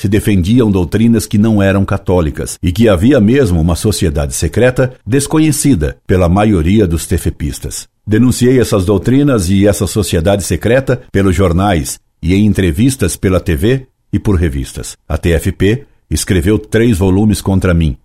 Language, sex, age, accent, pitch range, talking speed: Portuguese, male, 60-79, Brazilian, 90-115 Hz, 145 wpm